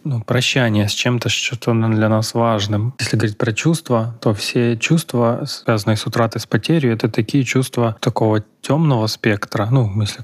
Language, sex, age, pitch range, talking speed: Ukrainian, male, 20-39, 110-125 Hz, 170 wpm